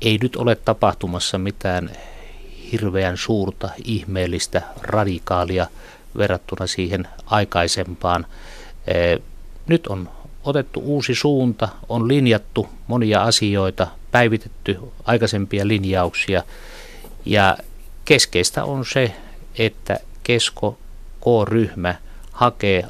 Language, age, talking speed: Finnish, 50-69, 80 wpm